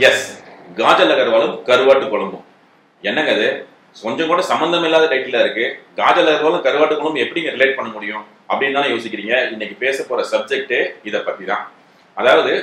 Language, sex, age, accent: Tamil, male, 40-59, native